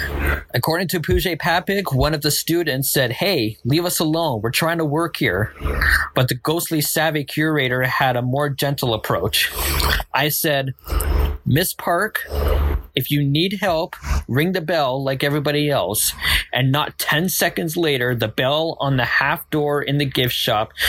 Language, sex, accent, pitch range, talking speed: English, male, American, 120-165 Hz, 165 wpm